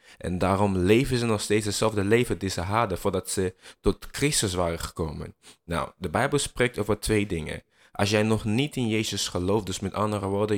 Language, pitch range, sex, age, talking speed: Dutch, 95-115 Hz, male, 20-39, 200 wpm